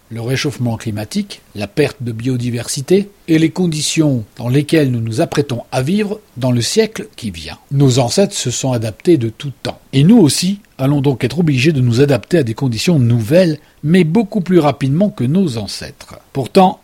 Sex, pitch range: male, 125-175 Hz